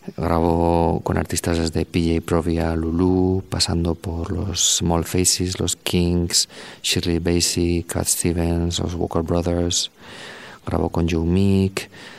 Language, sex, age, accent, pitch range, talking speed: Spanish, male, 40-59, Spanish, 85-95 Hz, 125 wpm